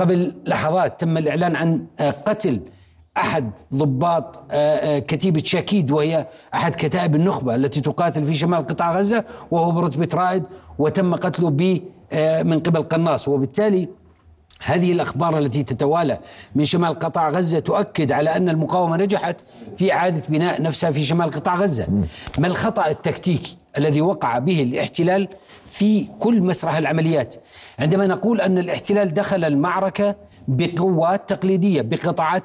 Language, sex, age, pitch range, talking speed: Arabic, male, 40-59, 155-200 Hz, 130 wpm